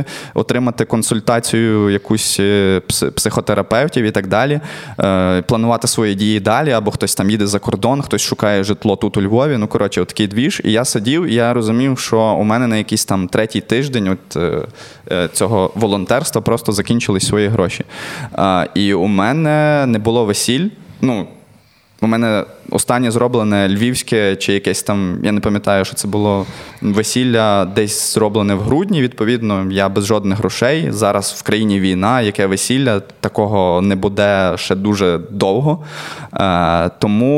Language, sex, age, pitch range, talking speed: Ukrainian, male, 20-39, 100-120 Hz, 150 wpm